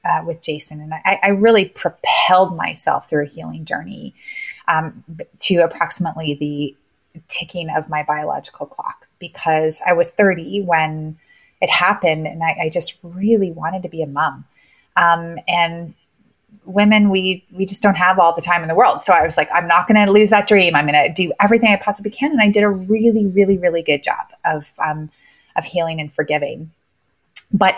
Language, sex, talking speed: English, female, 190 wpm